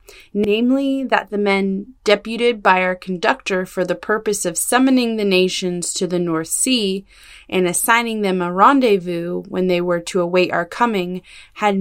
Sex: female